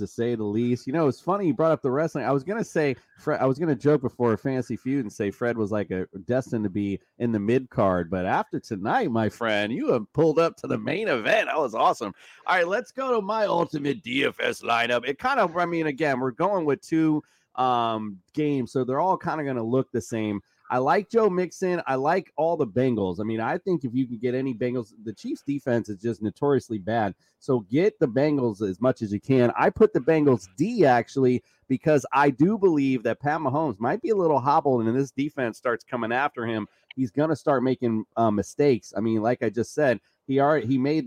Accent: American